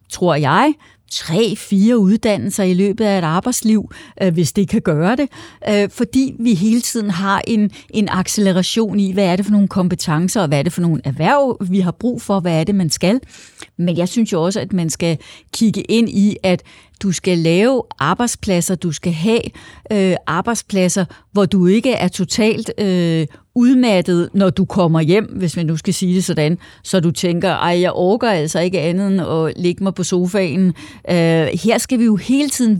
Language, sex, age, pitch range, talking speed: Danish, female, 30-49, 175-220 Hz, 190 wpm